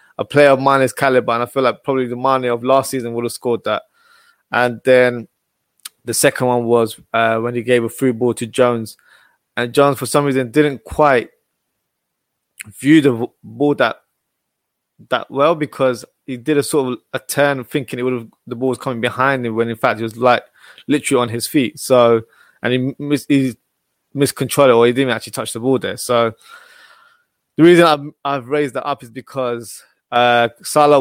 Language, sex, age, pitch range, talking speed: English, male, 20-39, 120-140 Hz, 195 wpm